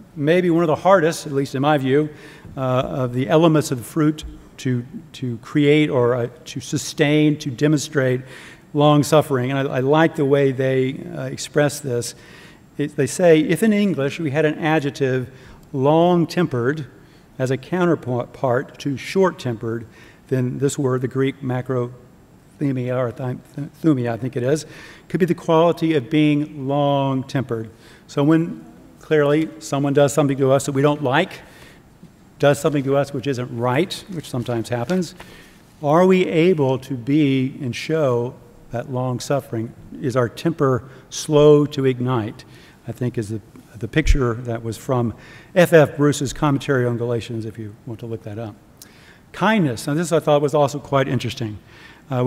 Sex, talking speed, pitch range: male, 165 wpm, 125-155 Hz